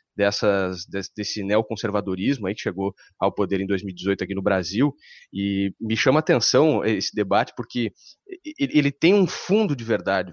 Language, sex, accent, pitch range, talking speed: Portuguese, male, Brazilian, 105-145 Hz, 170 wpm